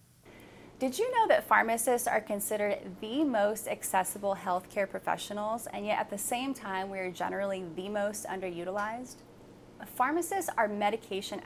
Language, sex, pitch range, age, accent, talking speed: English, female, 190-255 Hz, 20-39, American, 140 wpm